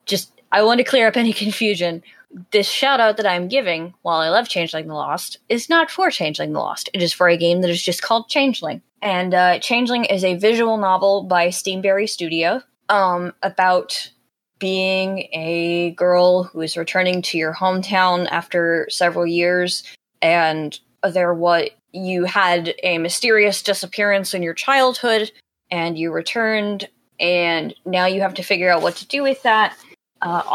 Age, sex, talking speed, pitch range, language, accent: 10-29, female, 165 wpm, 170-205 Hz, English, American